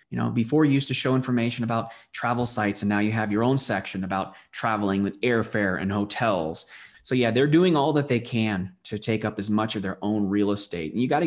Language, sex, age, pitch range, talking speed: English, male, 20-39, 110-130 Hz, 240 wpm